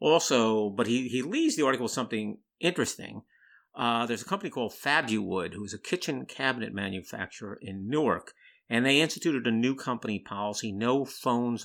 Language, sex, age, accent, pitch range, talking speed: English, male, 50-69, American, 105-125 Hz, 170 wpm